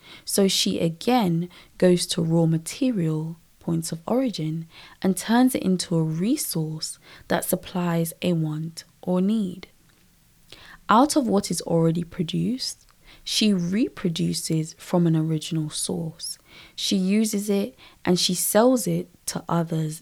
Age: 20-39